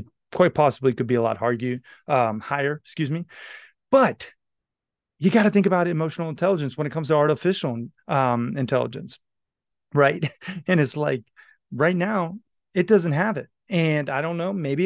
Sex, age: male, 30-49